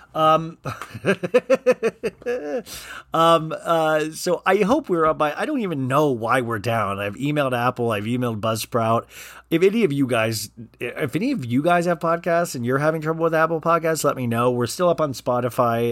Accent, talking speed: American, 185 wpm